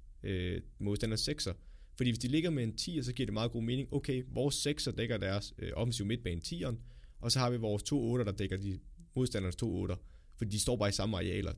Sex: male